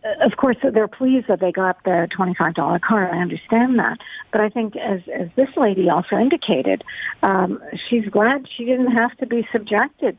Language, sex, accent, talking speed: English, female, American, 185 wpm